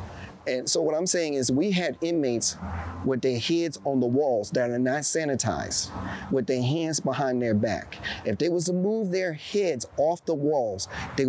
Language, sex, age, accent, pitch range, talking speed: English, male, 40-59, American, 110-145 Hz, 190 wpm